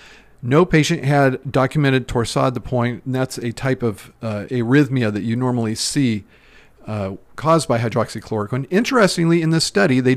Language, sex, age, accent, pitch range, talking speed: English, male, 40-59, American, 115-145 Hz, 160 wpm